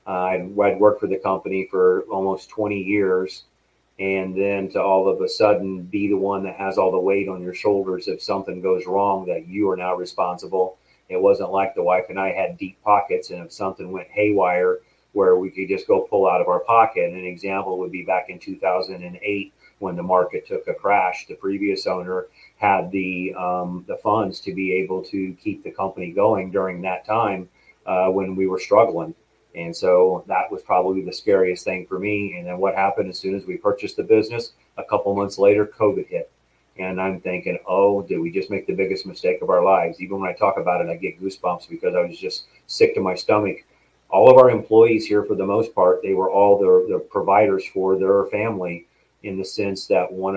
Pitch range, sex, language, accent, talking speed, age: 95-130 Hz, male, English, American, 210 wpm, 40-59